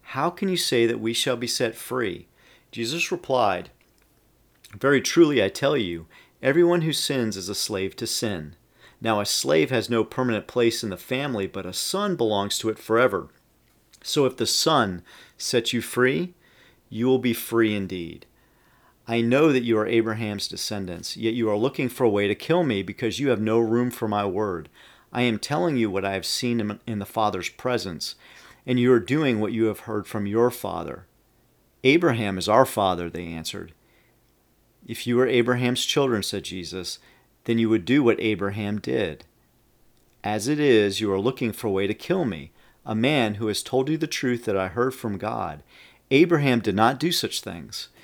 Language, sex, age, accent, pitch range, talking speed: English, male, 40-59, American, 105-125 Hz, 190 wpm